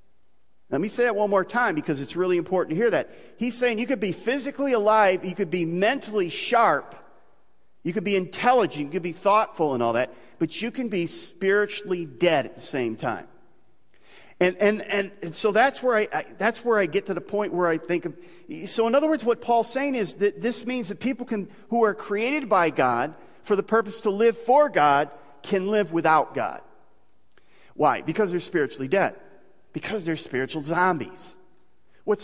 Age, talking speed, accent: 40-59, 200 wpm, American